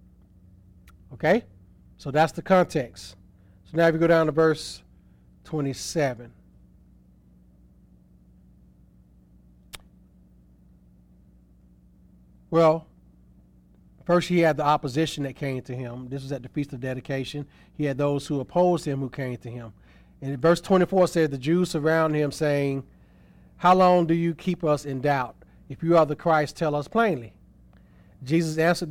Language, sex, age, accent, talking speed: English, male, 40-59, American, 145 wpm